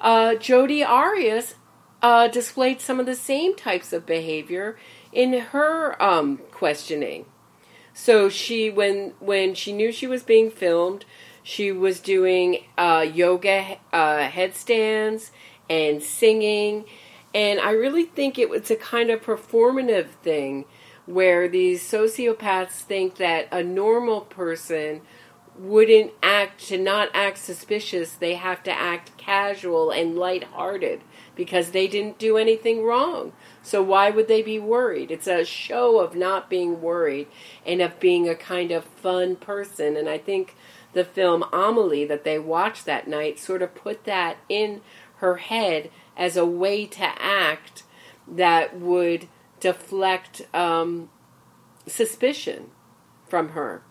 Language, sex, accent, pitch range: English, female, American, 175-225 Hz